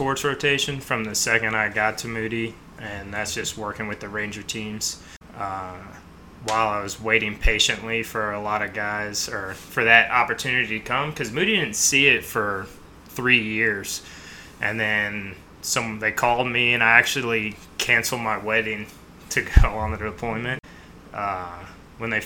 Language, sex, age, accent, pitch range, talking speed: English, male, 20-39, American, 100-115 Hz, 165 wpm